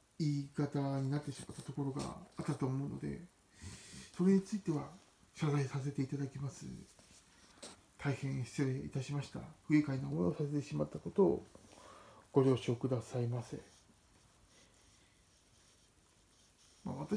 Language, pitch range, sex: Japanese, 115-155 Hz, male